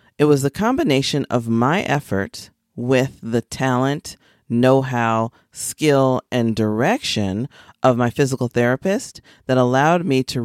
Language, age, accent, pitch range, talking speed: English, 30-49, American, 110-140 Hz, 125 wpm